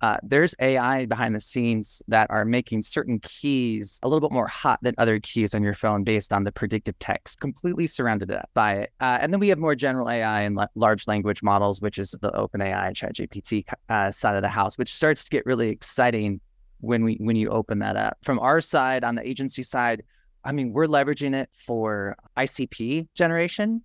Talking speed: 210 wpm